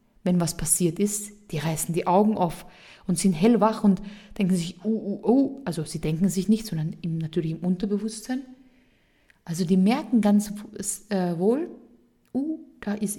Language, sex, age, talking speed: German, female, 20-39, 145 wpm